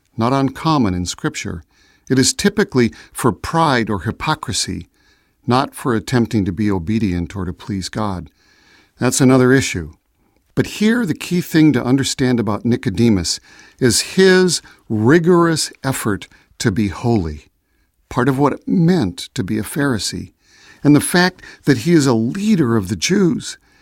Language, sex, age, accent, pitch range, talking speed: English, male, 50-69, American, 105-170 Hz, 150 wpm